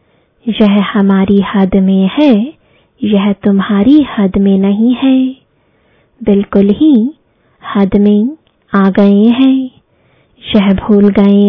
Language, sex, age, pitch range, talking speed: English, female, 20-39, 200-260 Hz, 110 wpm